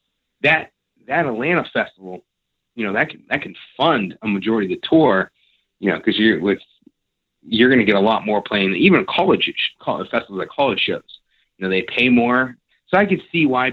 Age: 30-49